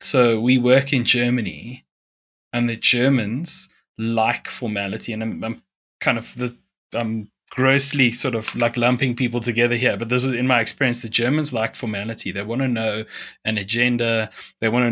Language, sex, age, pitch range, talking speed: English, male, 20-39, 110-125 Hz, 175 wpm